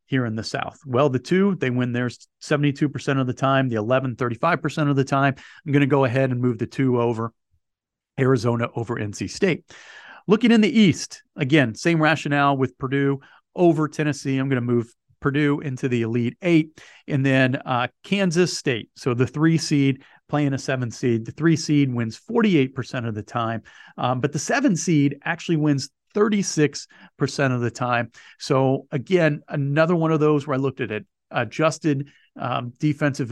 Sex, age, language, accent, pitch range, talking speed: male, 40-59, English, American, 125-150 Hz, 180 wpm